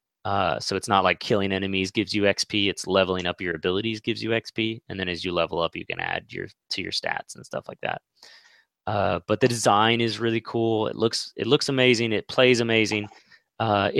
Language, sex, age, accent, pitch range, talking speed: English, male, 20-39, American, 95-115 Hz, 220 wpm